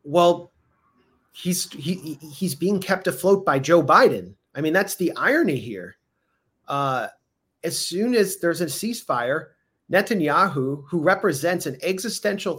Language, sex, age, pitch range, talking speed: English, male, 30-49, 140-185 Hz, 135 wpm